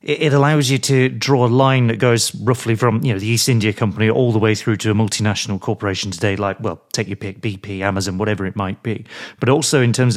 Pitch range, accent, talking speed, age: 105-130 Hz, British, 240 wpm, 40-59